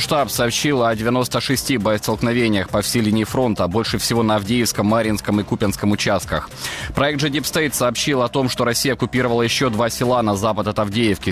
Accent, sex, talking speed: native, male, 170 wpm